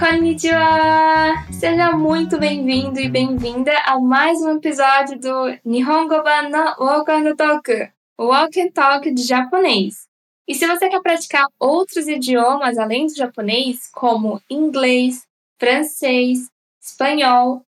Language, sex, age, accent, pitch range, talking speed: Portuguese, female, 10-29, Brazilian, 255-315 Hz, 115 wpm